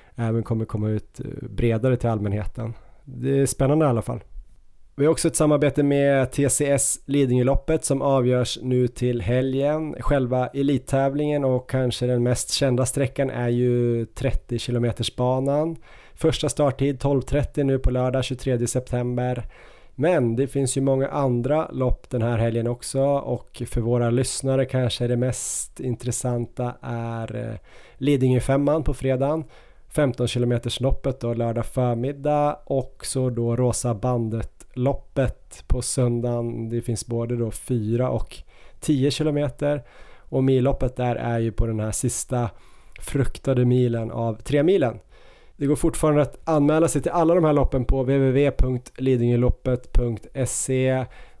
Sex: male